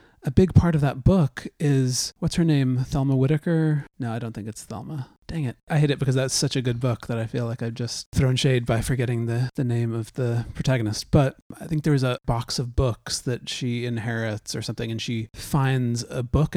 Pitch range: 115-145 Hz